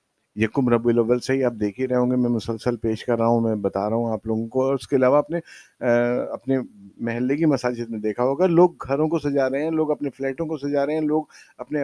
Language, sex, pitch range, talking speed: Urdu, male, 115-150 Hz, 260 wpm